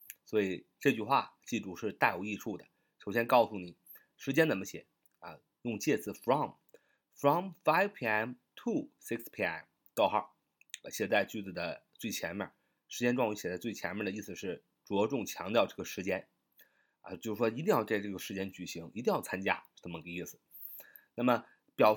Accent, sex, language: native, male, Chinese